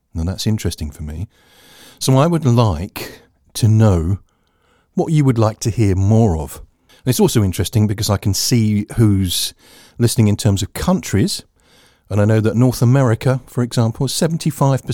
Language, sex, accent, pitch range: English, male, British, 85-120 Hz